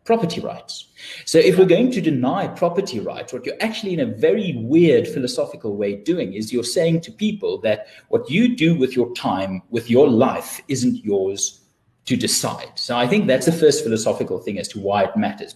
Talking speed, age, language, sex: 200 wpm, 30-49, English, male